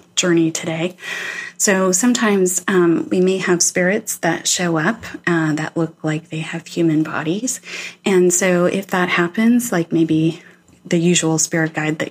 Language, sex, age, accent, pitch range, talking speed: English, female, 30-49, American, 165-190 Hz, 160 wpm